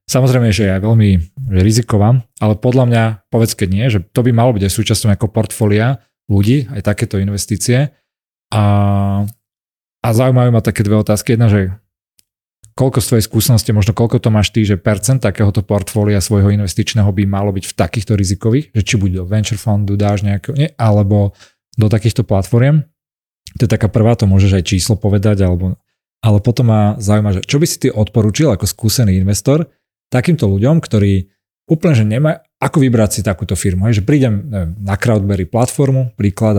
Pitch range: 105-120 Hz